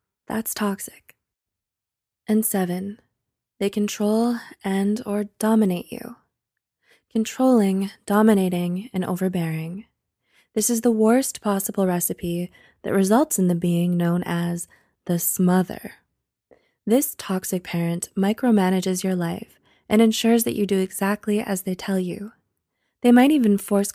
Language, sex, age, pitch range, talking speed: English, female, 20-39, 195-230 Hz, 125 wpm